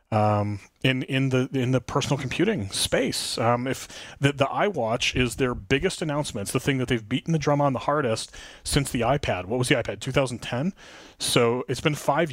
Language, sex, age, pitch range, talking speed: English, male, 30-49, 115-145 Hz, 200 wpm